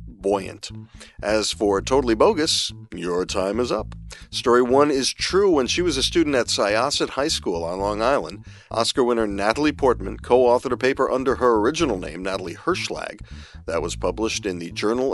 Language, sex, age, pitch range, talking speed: English, male, 40-59, 100-125 Hz, 175 wpm